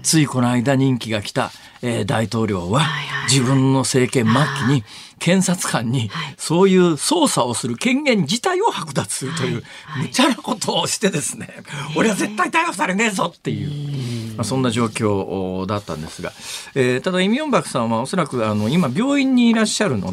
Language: Japanese